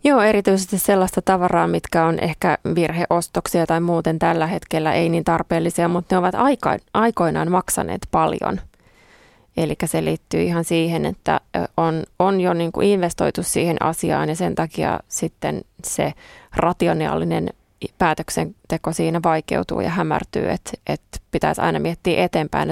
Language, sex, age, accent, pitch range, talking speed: Finnish, female, 20-39, native, 160-185 Hz, 135 wpm